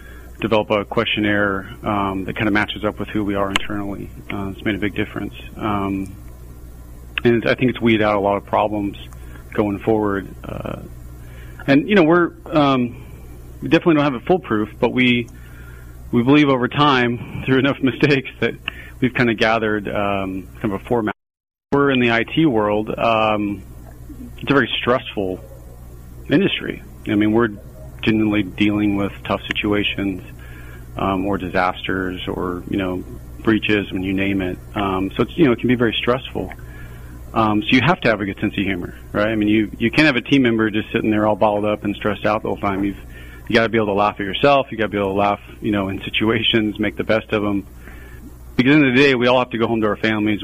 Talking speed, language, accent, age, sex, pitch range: 215 wpm, English, American, 30-49, male, 95-115 Hz